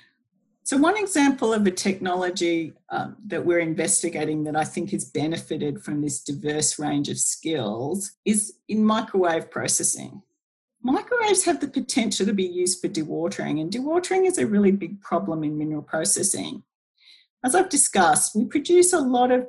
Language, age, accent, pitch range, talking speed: English, 50-69, Australian, 165-215 Hz, 160 wpm